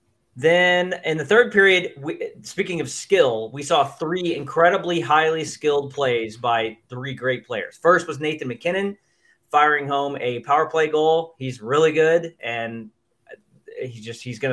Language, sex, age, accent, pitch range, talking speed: English, male, 30-49, American, 120-165 Hz, 155 wpm